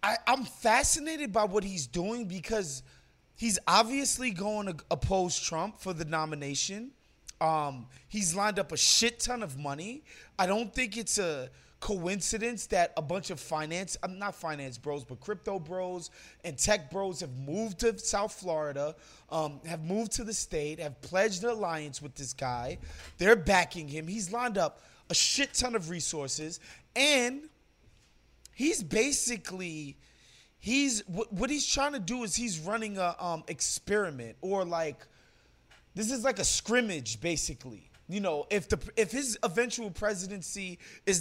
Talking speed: 155 wpm